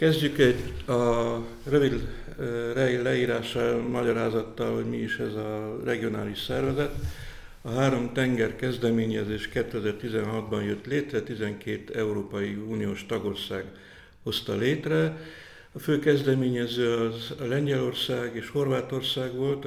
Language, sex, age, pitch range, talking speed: Hungarian, male, 60-79, 105-120 Hz, 100 wpm